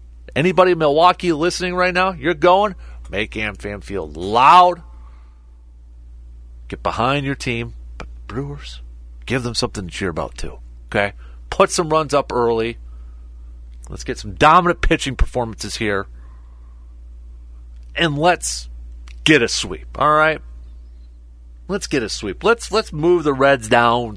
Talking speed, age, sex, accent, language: 135 wpm, 40-59, male, American, English